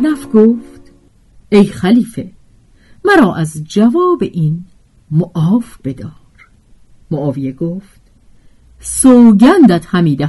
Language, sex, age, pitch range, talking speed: Persian, female, 50-69, 140-215 Hz, 80 wpm